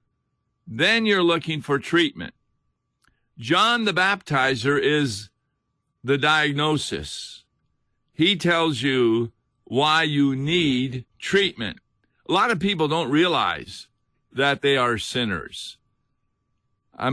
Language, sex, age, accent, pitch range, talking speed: English, male, 50-69, American, 115-150 Hz, 100 wpm